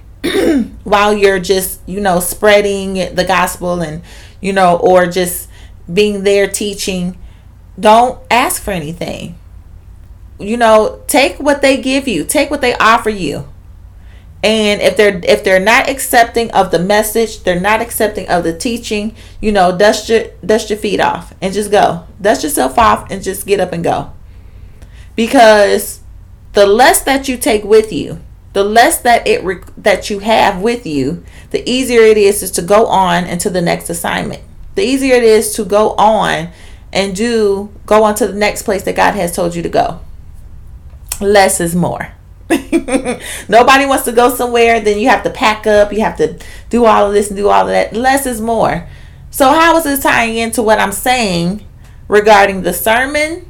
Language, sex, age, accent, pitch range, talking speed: English, female, 30-49, American, 175-230 Hz, 180 wpm